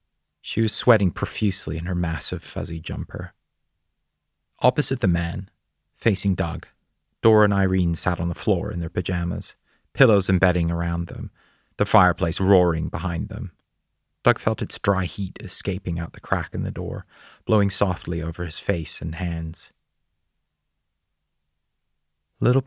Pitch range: 85-110 Hz